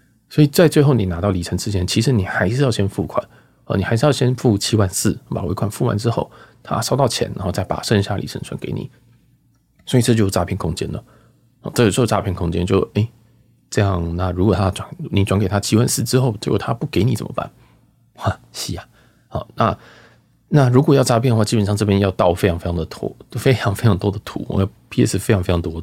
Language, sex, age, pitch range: Chinese, male, 20-39, 95-115 Hz